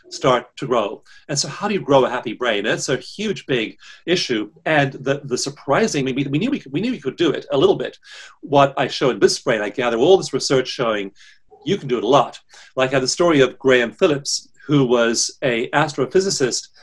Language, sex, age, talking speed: English, male, 40-59, 220 wpm